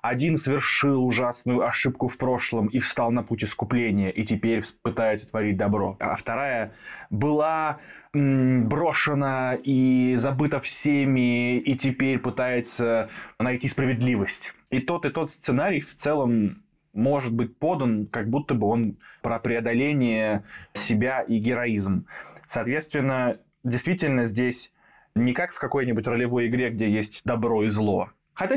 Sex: male